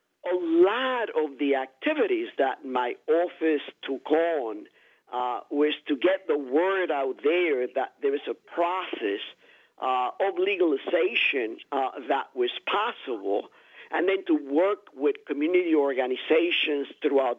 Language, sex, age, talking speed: English, male, 50-69, 130 wpm